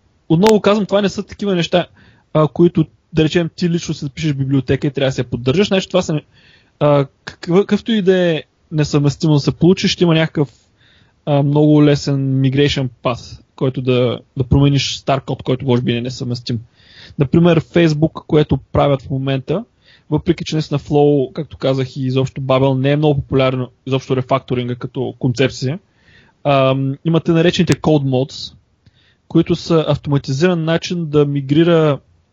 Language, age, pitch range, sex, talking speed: Bulgarian, 20-39, 130-160 Hz, male, 160 wpm